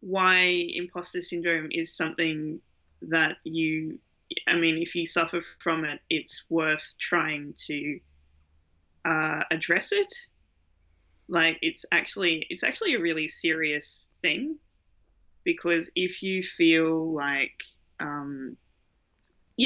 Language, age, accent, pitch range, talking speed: English, 20-39, Australian, 145-175 Hz, 110 wpm